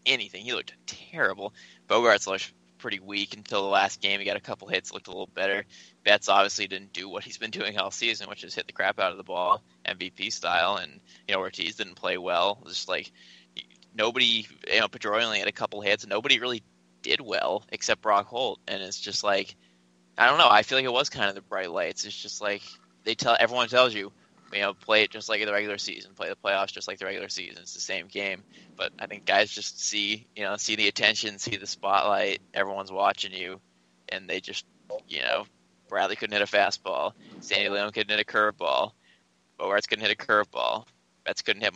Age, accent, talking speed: 20-39, American, 225 wpm